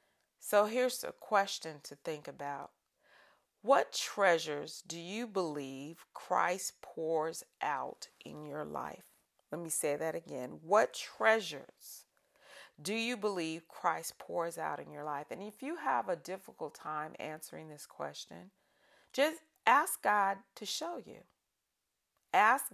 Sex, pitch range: female, 155-205 Hz